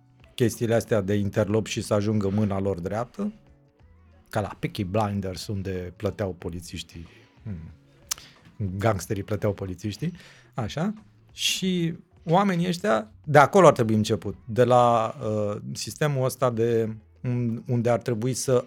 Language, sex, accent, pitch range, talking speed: Romanian, male, native, 110-135 Hz, 125 wpm